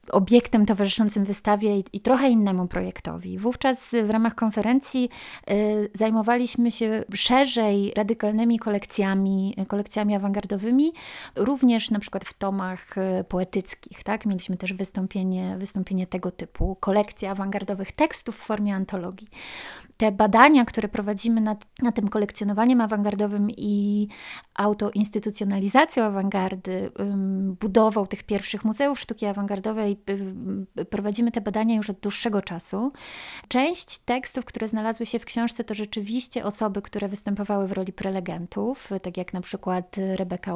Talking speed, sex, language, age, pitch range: 125 wpm, female, Polish, 20-39, 195-220 Hz